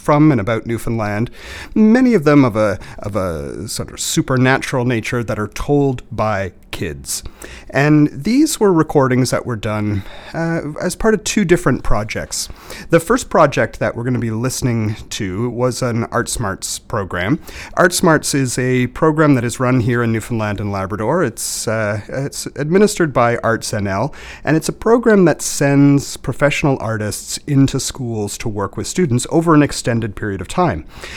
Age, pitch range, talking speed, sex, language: 40-59, 105-145 Hz, 170 wpm, male, English